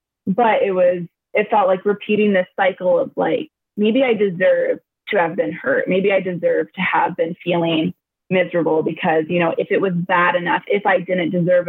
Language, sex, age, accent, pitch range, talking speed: English, female, 20-39, American, 180-205 Hz, 195 wpm